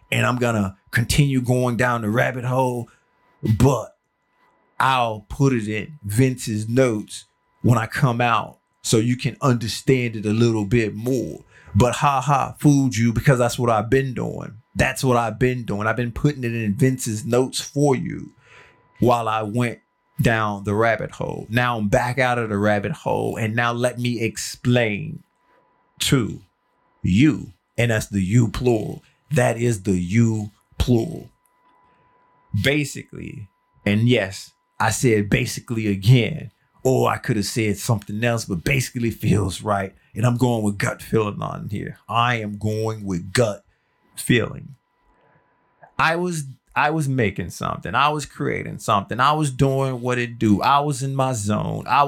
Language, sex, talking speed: English, male, 160 wpm